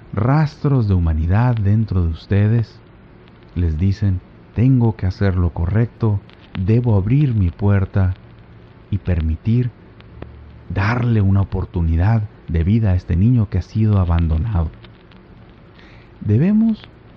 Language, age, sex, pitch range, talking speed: Spanish, 50-69, male, 85-115 Hz, 110 wpm